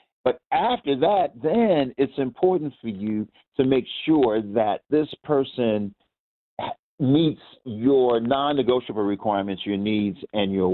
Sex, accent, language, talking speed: male, American, English, 125 wpm